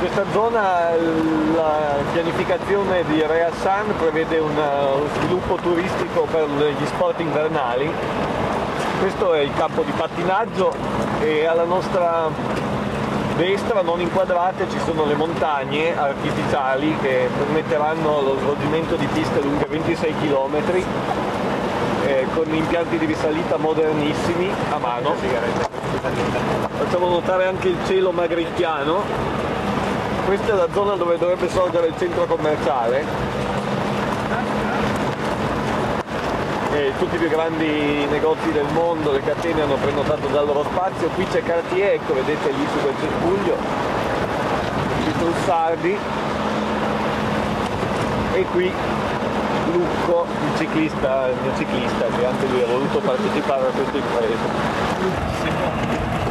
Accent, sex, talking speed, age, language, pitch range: native, male, 115 wpm, 40-59, Italian, 150-175 Hz